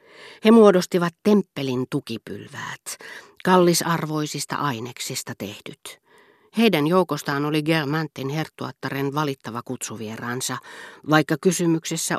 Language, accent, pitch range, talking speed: Finnish, native, 125-155 Hz, 80 wpm